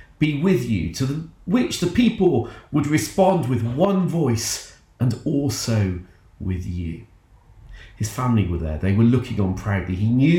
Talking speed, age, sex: 155 wpm, 40-59, male